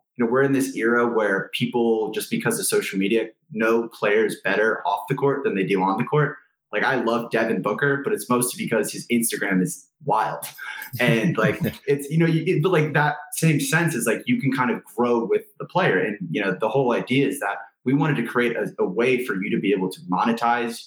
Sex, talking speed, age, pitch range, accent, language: male, 225 wpm, 20-39, 105-135 Hz, American, English